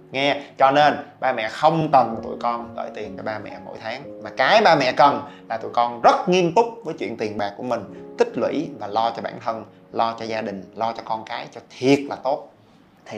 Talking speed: 240 wpm